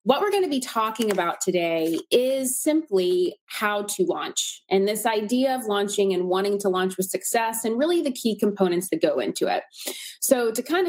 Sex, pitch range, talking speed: female, 175-230 Hz, 195 wpm